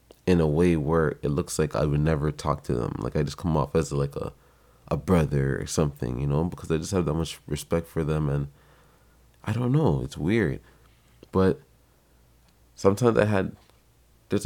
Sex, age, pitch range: male, 20-39, 75-85 Hz